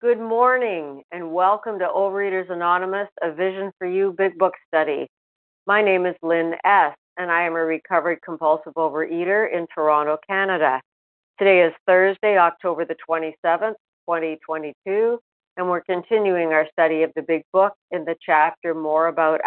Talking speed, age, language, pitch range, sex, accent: 155 wpm, 50-69, English, 160-200 Hz, female, American